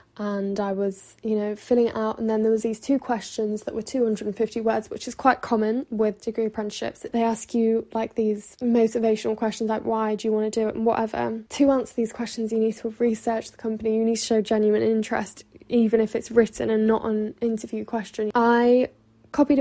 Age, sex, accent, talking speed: 10-29, female, British, 215 wpm